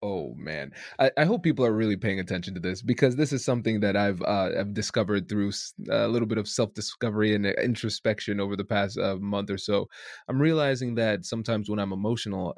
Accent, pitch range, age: American, 105-130 Hz, 20-39